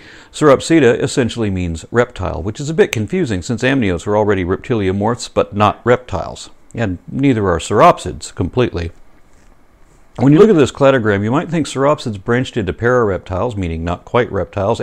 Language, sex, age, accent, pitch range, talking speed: English, male, 60-79, American, 90-120 Hz, 160 wpm